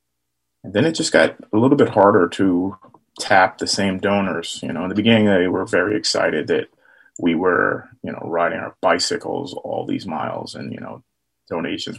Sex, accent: male, American